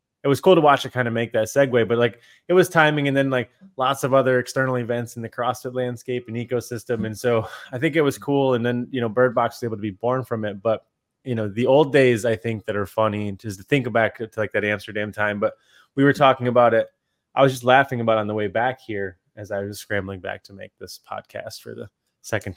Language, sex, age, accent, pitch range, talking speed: English, male, 20-39, American, 115-140 Hz, 260 wpm